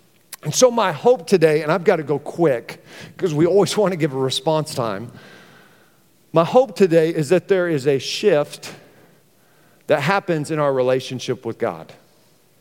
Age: 50-69